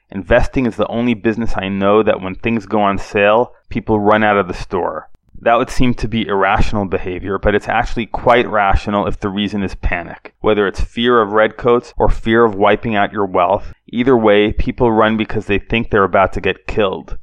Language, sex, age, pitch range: English, male, 30-49, 95-115 Hz